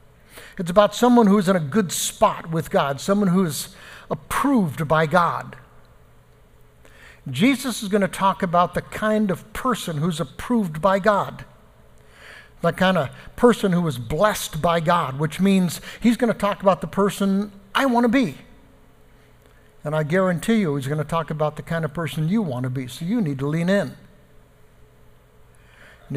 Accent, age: American, 60-79